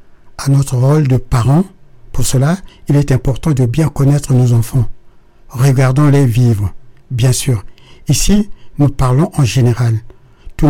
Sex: male